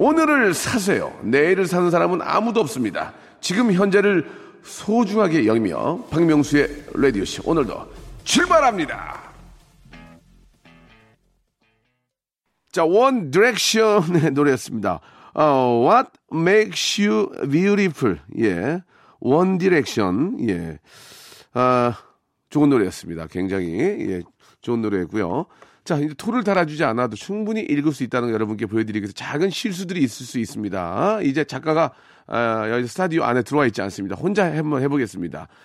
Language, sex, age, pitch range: Korean, male, 40-59, 115-190 Hz